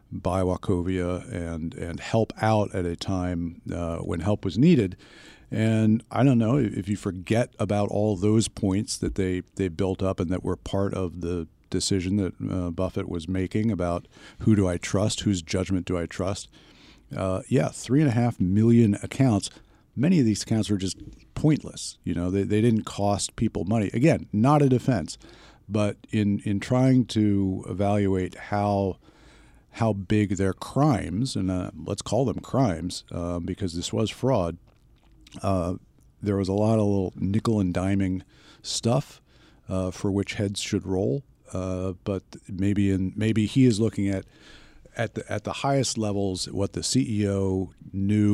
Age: 50-69